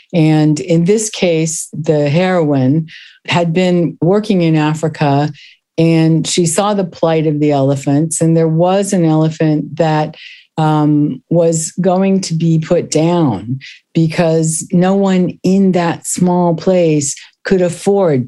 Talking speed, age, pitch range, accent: 135 wpm, 50-69, 145-175 Hz, American